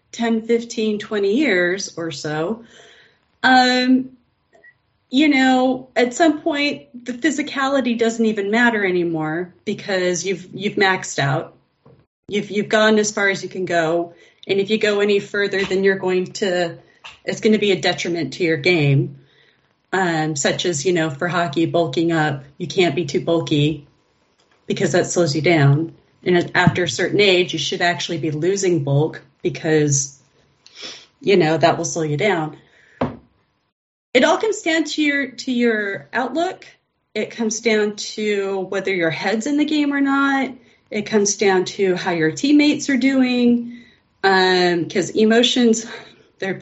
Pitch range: 175-240 Hz